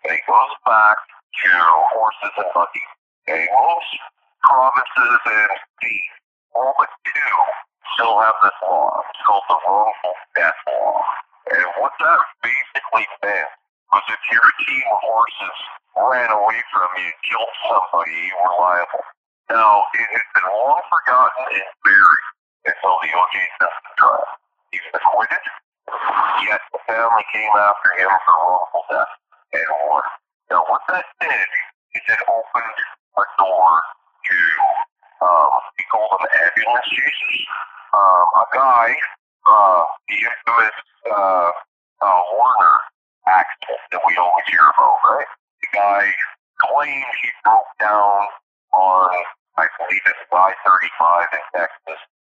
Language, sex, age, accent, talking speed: English, male, 40-59, American, 135 wpm